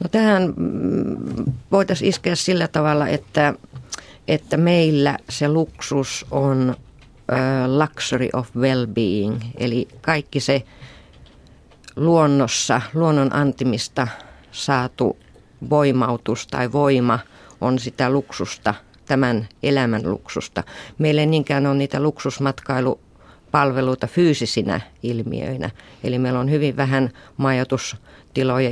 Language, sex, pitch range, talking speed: Finnish, female, 125-145 Hz, 95 wpm